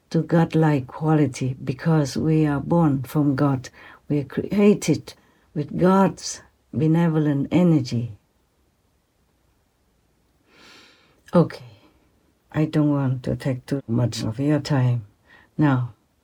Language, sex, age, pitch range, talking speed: English, female, 60-79, 125-150 Hz, 105 wpm